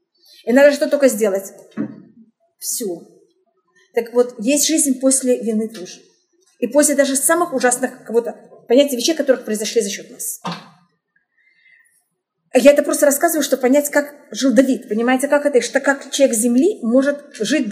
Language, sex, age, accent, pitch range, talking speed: Russian, female, 30-49, native, 230-285 Hz, 145 wpm